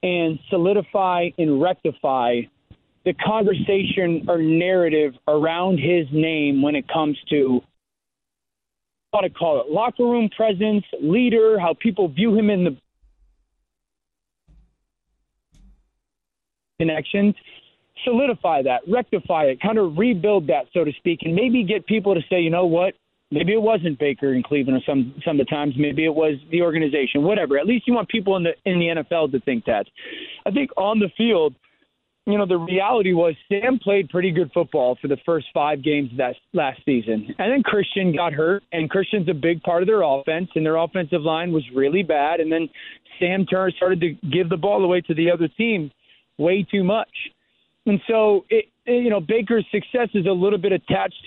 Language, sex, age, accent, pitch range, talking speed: English, male, 30-49, American, 155-205 Hz, 185 wpm